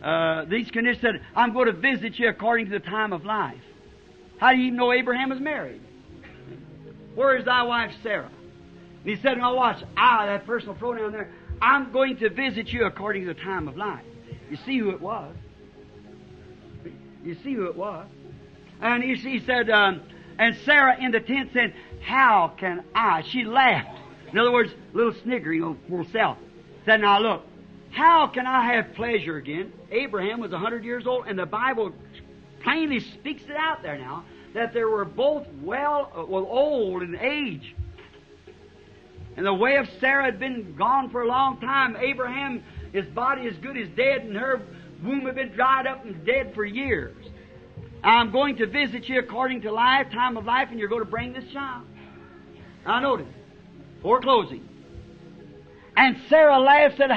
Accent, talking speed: American, 180 wpm